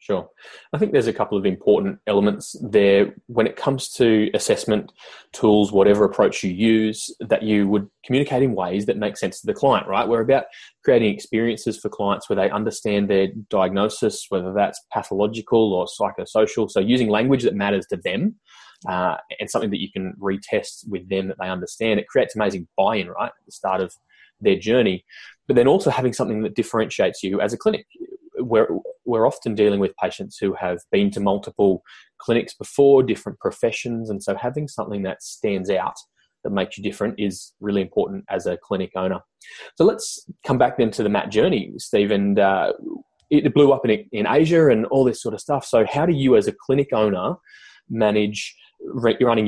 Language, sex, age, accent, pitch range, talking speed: English, male, 20-39, Australian, 100-140 Hz, 190 wpm